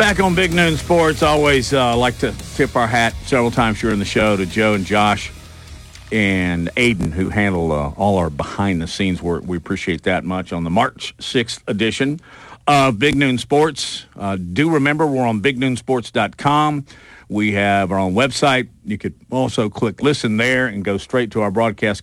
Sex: male